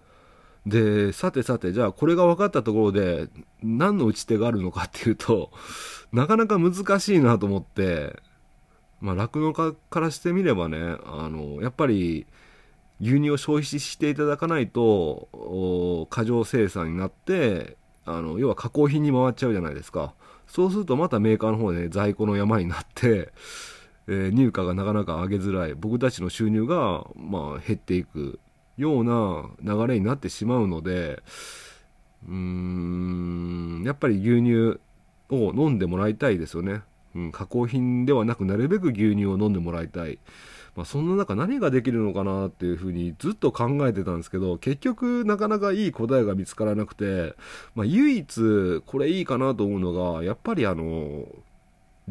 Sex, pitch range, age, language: male, 90-135 Hz, 40-59, Japanese